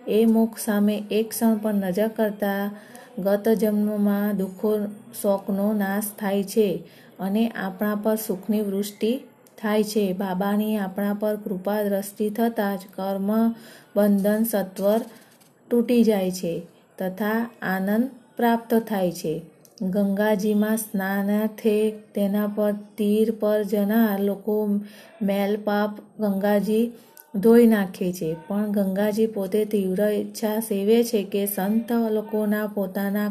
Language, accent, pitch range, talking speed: Gujarati, native, 205-220 Hz, 75 wpm